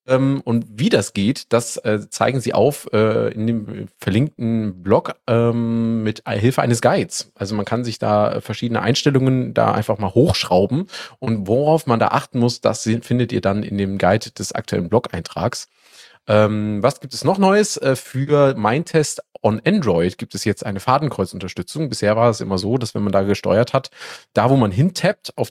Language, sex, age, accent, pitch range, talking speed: German, male, 30-49, German, 105-135 Hz, 175 wpm